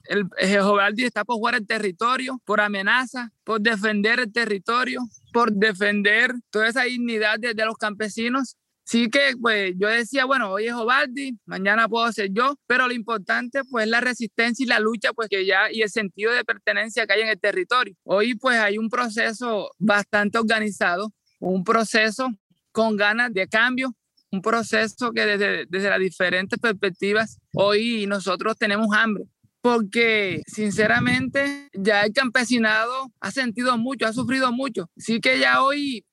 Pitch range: 210-245 Hz